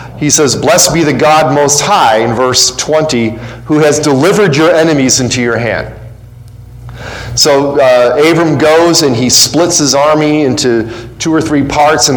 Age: 40-59